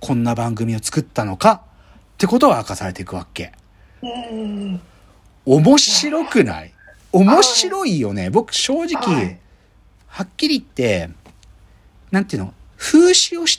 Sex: male